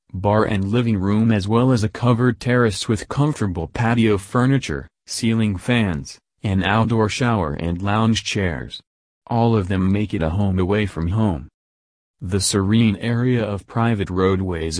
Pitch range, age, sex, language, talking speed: 90-115 Hz, 40-59, male, English, 155 wpm